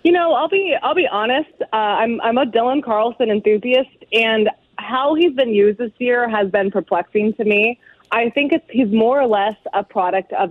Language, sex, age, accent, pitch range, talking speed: English, female, 20-39, American, 200-235 Hz, 205 wpm